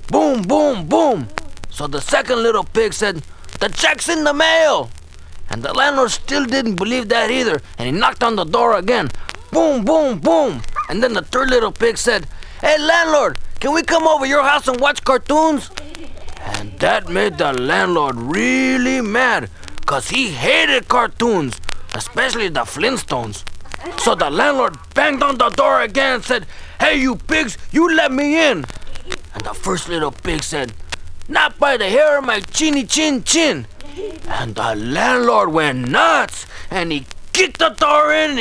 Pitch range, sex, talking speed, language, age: 235-310 Hz, male, 165 wpm, English, 30-49